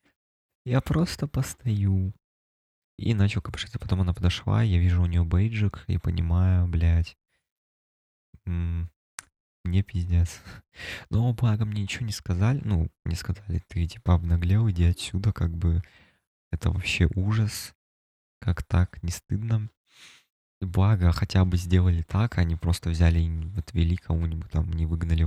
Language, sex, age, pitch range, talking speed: Russian, male, 20-39, 85-105 Hz, 135 wpm